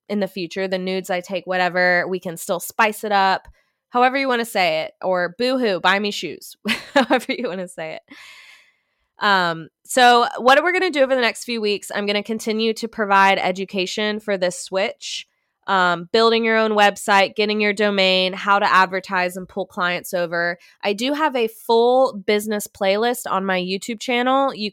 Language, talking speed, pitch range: English, 195 wpm, 185-225 Hz